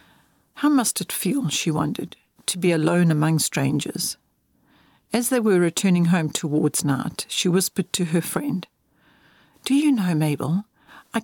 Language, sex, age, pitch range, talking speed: English, female, 60-79, 175-245 Hz, 150 wpm